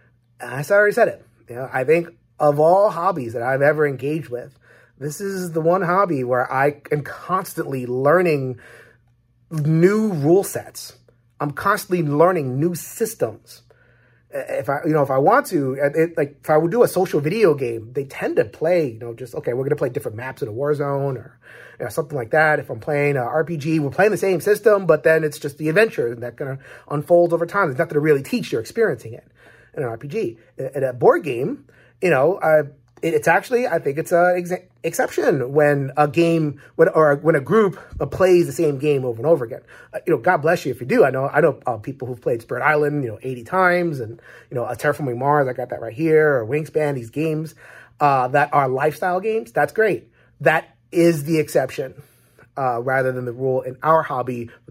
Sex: male